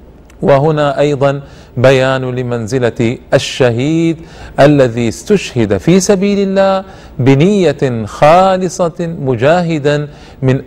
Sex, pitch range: male, 120-180 Hz